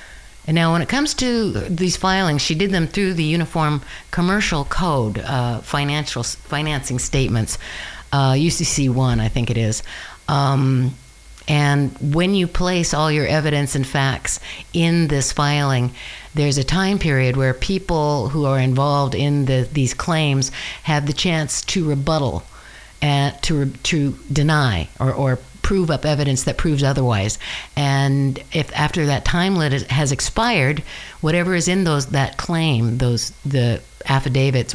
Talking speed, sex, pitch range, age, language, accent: 150 wpm, female, 130-170 Hz, 50-69, English, American